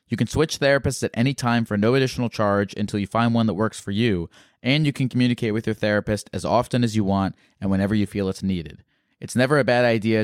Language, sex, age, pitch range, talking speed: English, male, 20-39, 100-125 Hz, 245 wpm